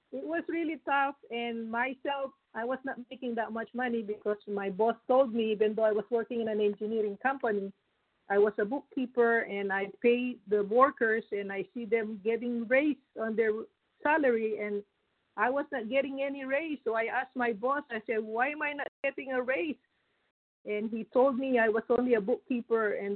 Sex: female